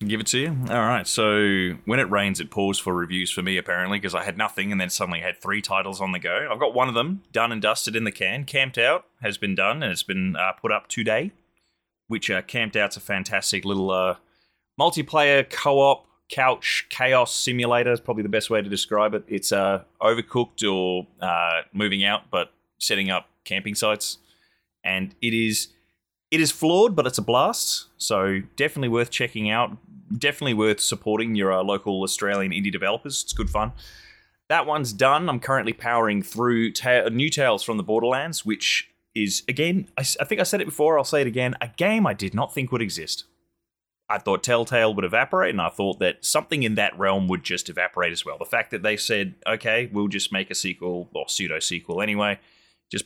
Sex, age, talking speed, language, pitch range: male, 20-39, 205 wpm, English, 95-125 Hz